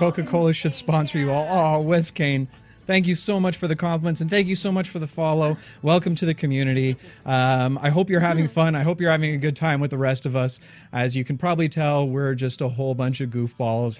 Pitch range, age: 115-150 Hz, 30-49